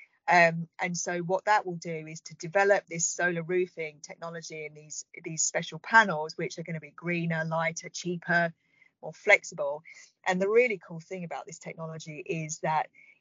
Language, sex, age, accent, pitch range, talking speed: English, female, 40-59, British, 165-190 Hz, 175 wpm